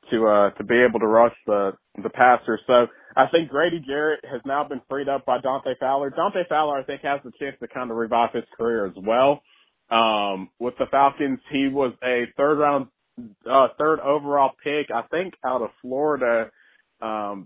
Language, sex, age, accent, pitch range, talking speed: English, male, 20-39, American, 110-145 Hz, 195 wpm